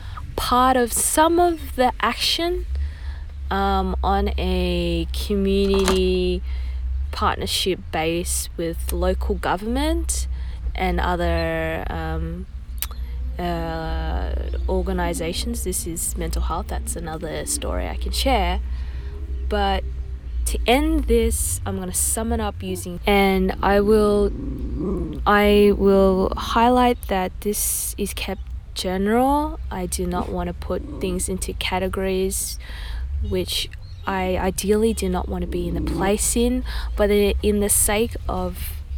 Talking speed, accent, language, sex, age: 120 wpm, Australian, English, female, 20-39